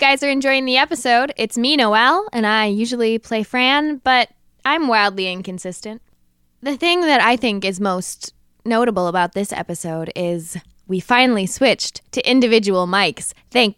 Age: 10-29